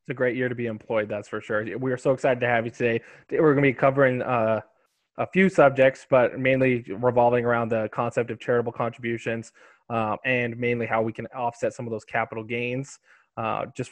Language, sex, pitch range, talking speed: English, male, 110-125 Hz, 220 wpm